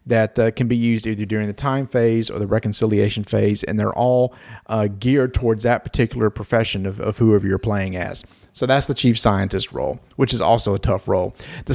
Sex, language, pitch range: male, English, 105-130 Hz